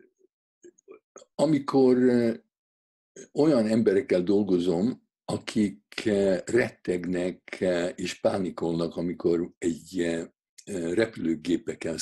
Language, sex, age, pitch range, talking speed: Hungarian, male, 60-79, 90-140 Hz, 55 wpm